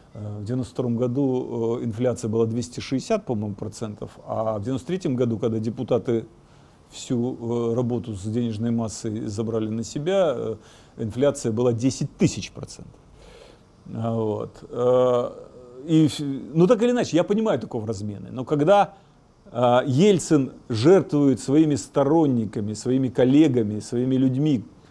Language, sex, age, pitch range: Russian, male, 40-59, 120-165 Hz